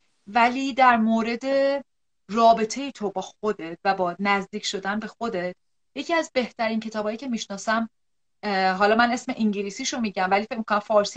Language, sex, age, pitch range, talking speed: Persian, female, 30-49, 205-275 Hz, 160 wpm